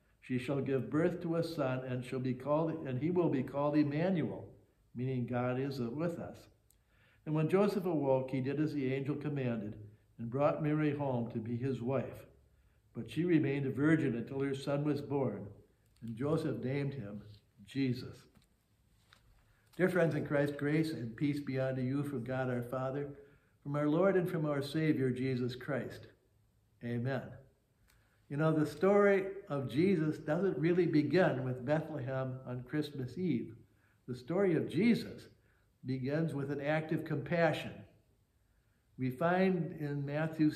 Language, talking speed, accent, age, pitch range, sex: English, 155 wpm, American, 60-79, 120-155 Hz, male